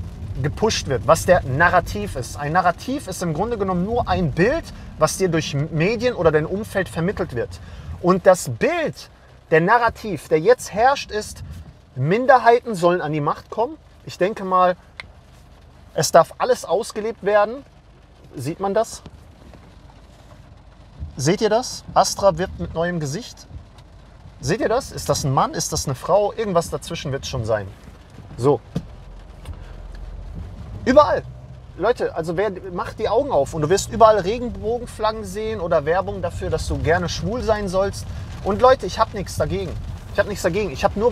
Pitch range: 130-205 Hz